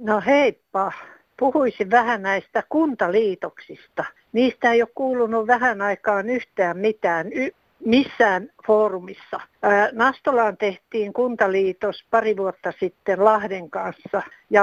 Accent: native